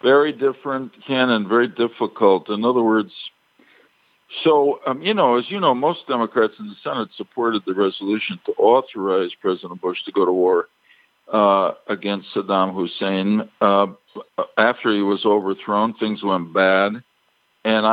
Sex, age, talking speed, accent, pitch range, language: male, 60-79, 145 wpm, American, 100-135 Hz, English